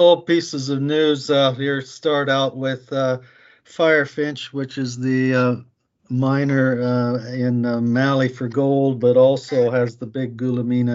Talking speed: 155 wpm